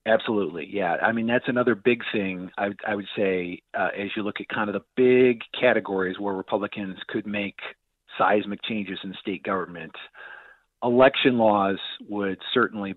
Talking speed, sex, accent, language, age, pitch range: 160 wpm, male, American, English, 40-59, 100-120 Hz